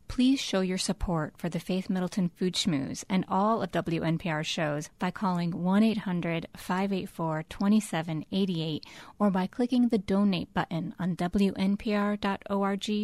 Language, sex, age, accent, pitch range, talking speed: English, female, 30-49, American, 170-205 Hz, 120 wpm